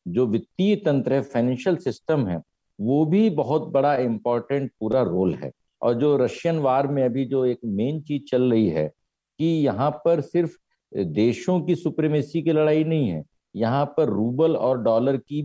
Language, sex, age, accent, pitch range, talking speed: Hindi, male, 50-69, native, 120-170 Hz, 175 wpm